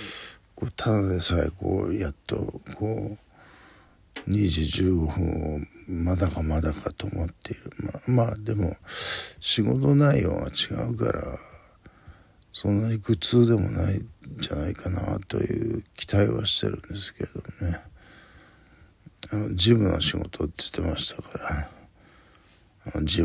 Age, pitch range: 60-79, 85-105 Hz